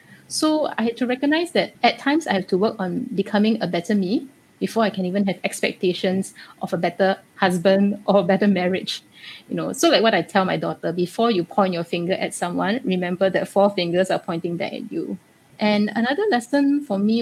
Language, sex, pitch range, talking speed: English, female, 185-225 Hz, 215 wpm